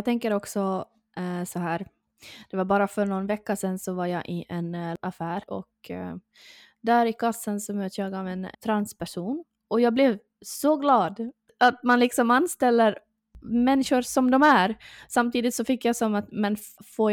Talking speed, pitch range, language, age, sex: 180 wpm, 195-235 Hz, Swedish, 20-39, female